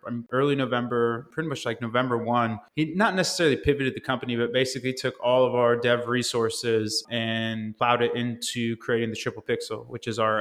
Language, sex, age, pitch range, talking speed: English, male, 20-39, 110-125 Hz, 185 wpm